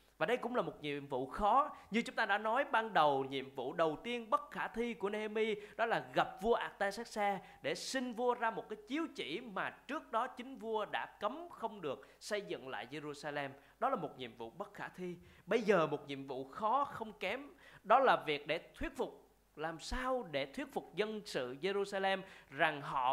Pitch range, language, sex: 160-235 Hz, Vietnamese, male